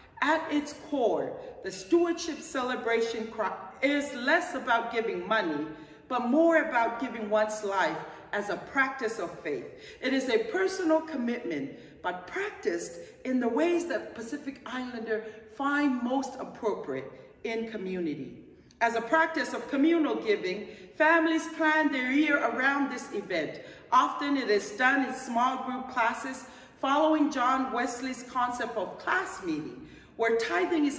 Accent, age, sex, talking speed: American, 40-59, female, 140 wpm